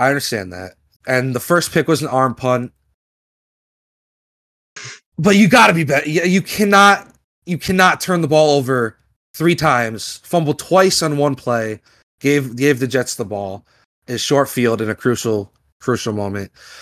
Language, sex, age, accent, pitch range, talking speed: English, male, 30-49, American, 115-155 Hz, 160 wpm